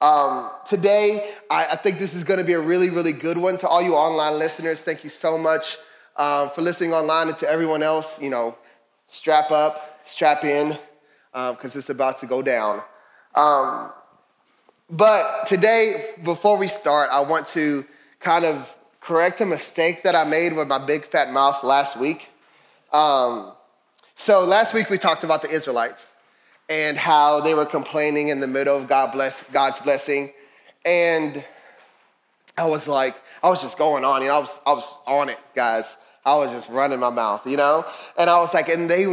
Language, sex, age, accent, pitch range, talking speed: English, male, 20-39, American, 140-175 Hz, 180 wpm